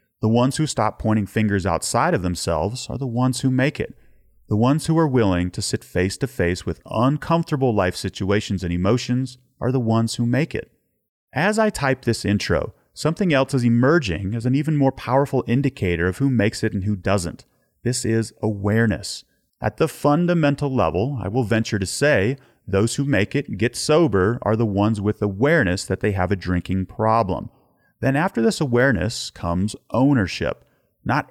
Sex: male